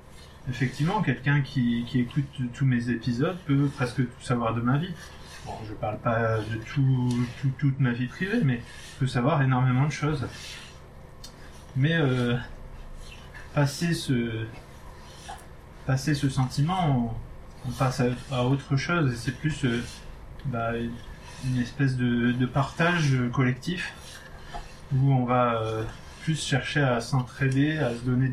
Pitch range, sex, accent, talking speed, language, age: 120-140 Hz, male, French, 145 wpm, French, 30-49